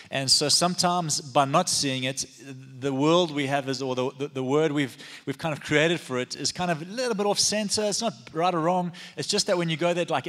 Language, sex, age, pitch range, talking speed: English, male, 30-49, 125-170 Hz, 255 wpm